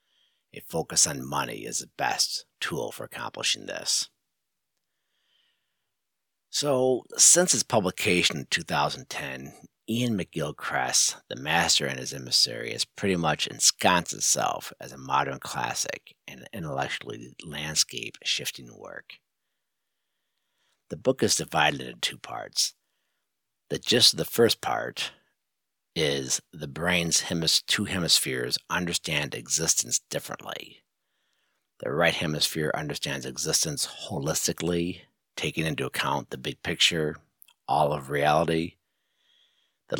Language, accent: English, American